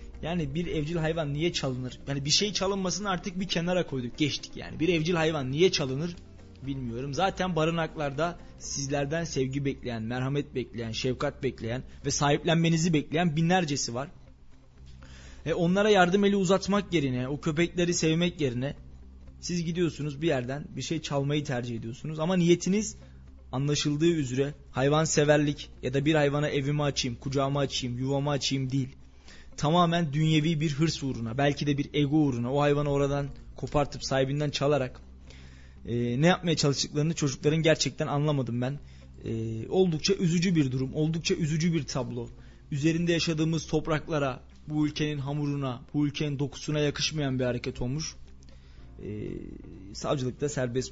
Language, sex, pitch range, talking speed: Turkish, male, 125-160 Hz, 140 wpm